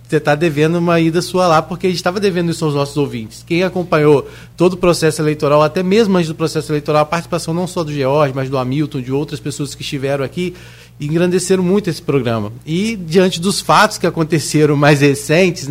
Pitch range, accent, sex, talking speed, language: 135-165 Hz, Brazilian, male, 210 wpm, Portuguese